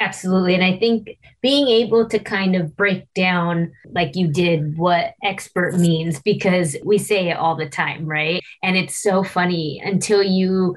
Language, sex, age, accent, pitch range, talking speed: English, female, 20-39, American, 170-220 Hz, 175 wpm